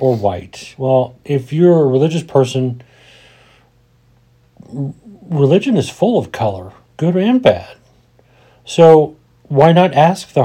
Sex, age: male, 40-59